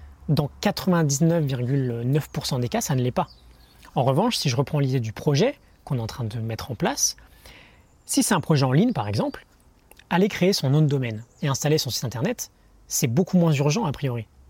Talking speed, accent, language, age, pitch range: 205 wpm, French, French, 20-39, 125-160 Hz